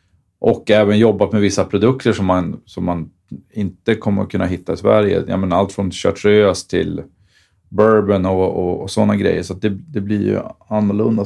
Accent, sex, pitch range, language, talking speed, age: native, male, 95-110 Hz, Swedish, 185 wpm, 40-59